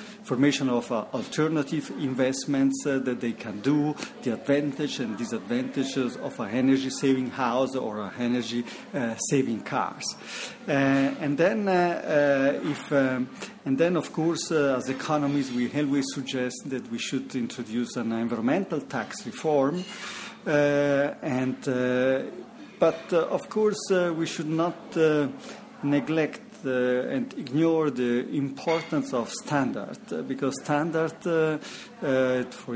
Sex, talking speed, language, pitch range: male, 130 wpm, English, 130-160 Hz